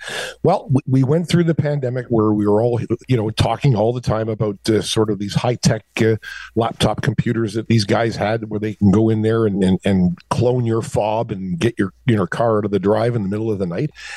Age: 50-69